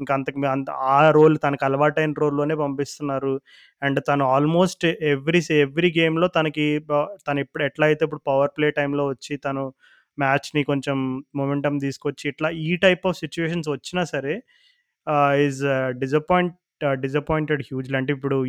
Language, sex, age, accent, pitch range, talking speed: Telugu, male, 20-39, native, 140-175 Hz, 145 wpm